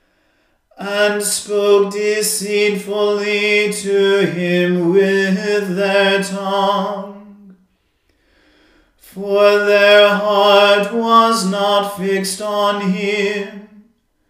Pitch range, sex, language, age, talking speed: 195-205 Hz, male, English, 40-59, 65 wpm